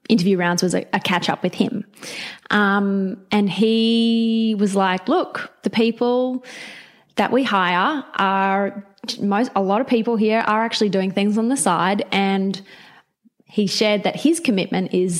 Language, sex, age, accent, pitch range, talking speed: English, female, 20-39, Australian, 185-220 Hz, 160 wpm